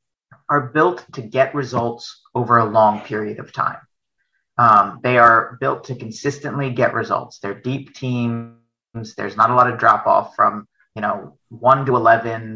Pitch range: 110-130 Hz